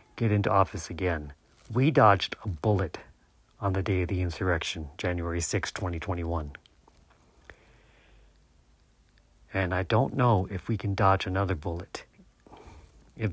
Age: 50-69